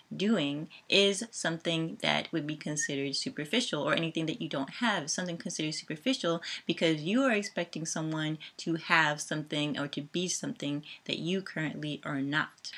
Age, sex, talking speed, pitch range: 20-39, female, 160 wpm, 150-175 Hz